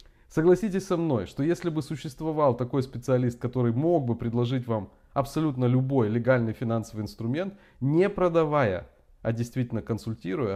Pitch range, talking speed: 110-145 Hz, 135 wpm